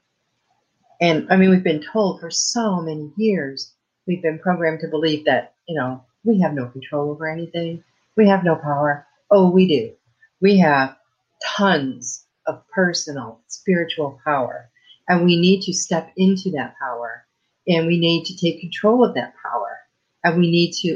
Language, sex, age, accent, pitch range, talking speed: English, female, 50-69, American, 160-195 Hz, 170 wpm